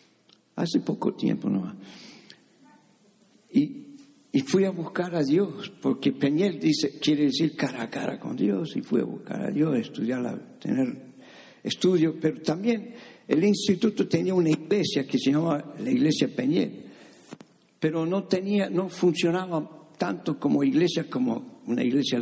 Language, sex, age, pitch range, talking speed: Spanish, male, 60-79, 150-240 Hz, 150 wpm